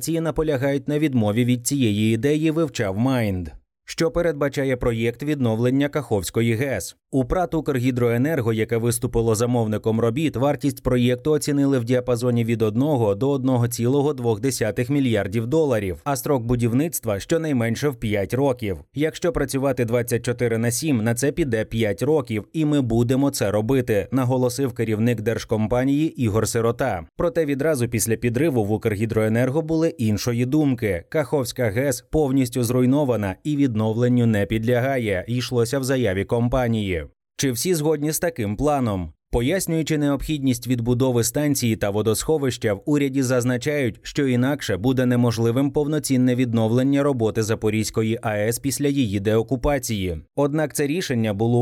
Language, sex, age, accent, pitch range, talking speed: Ukrainian, male, 20-39, native, 115-145 Hz, 130 wpm